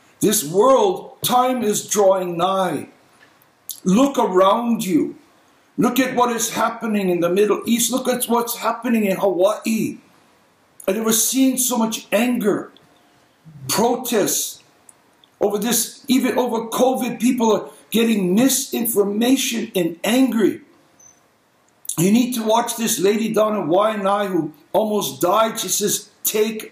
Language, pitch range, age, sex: English, 200-250 Hz, 60-79, male